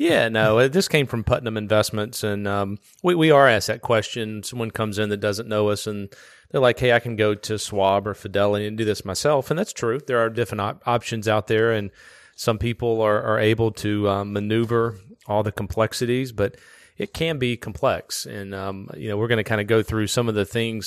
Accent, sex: American, male